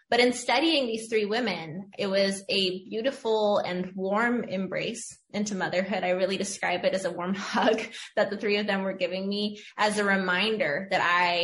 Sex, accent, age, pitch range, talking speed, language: female, American, 20-39, 180-220 Hz, 190 wpm, English